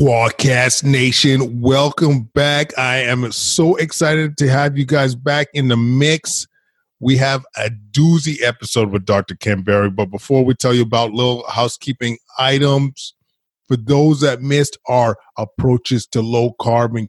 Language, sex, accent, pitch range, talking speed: English, male, American, 115-140 Hz, 145 wpm